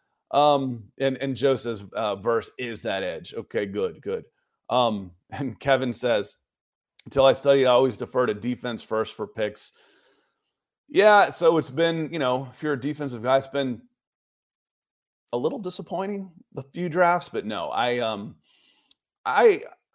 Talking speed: 155 wpm